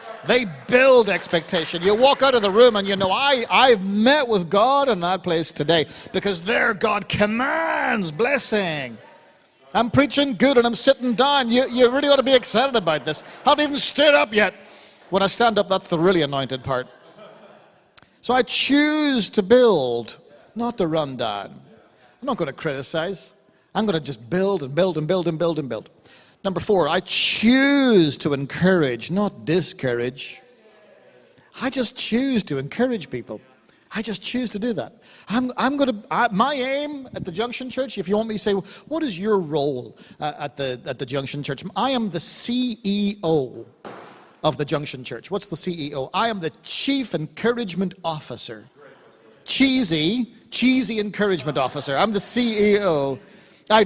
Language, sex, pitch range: English, male, 160-245 Hz